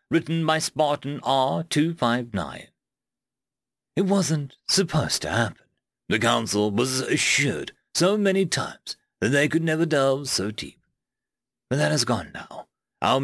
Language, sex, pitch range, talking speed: English, male, 110-150 Hz, 130 wpm